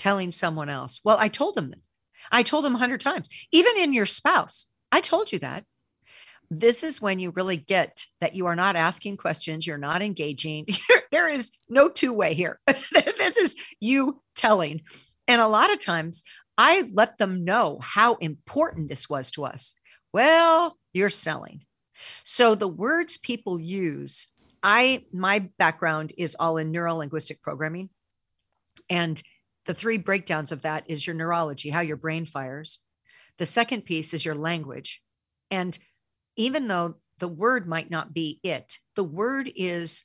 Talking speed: 160 wpm